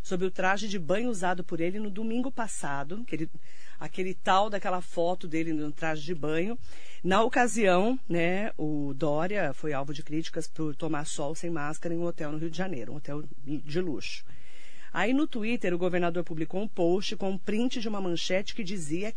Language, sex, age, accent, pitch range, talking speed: Portuguese, female, 40-59, Brazilian, 165-230 Hz, 195 wpm